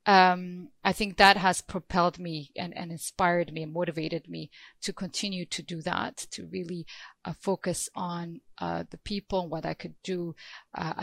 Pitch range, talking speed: 170-195 Hz, 180 wpm